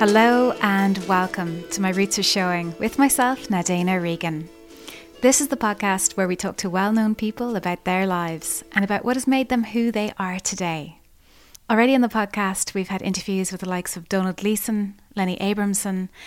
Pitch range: 185-215 Hz